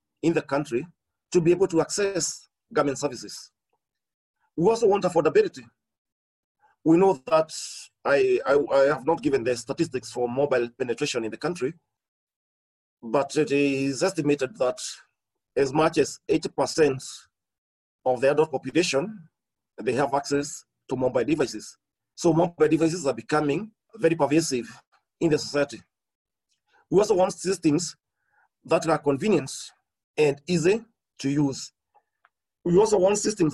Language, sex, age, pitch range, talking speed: English, male, 40-59, 135-175 Hz, 130 wpm